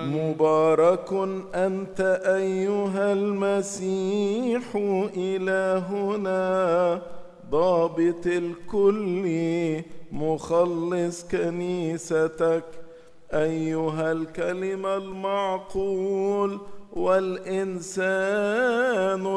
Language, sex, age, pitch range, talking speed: English, male, 50-69, 170-195 Hz, 40 wpm